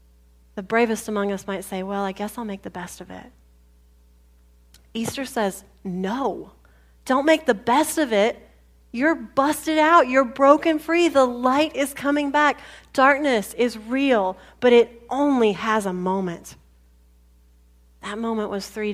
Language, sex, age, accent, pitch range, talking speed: English, female, 30-49, American, 160-235 Hz, 150 wpm